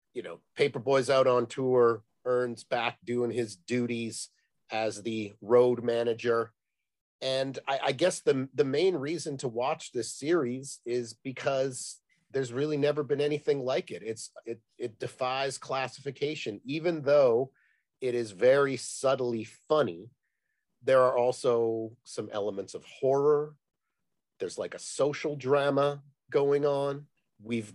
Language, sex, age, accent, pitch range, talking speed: English, male, 40-59, American, 120-145 Hz, 135 wpm